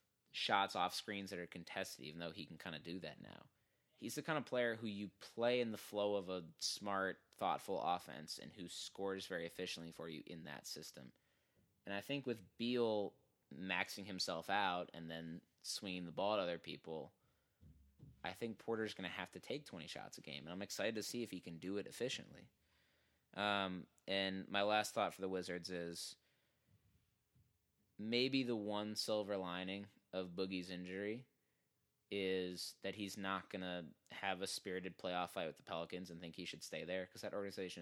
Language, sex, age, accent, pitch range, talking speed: English, male, 20-39, American, 85-100 Hz, 190 wpm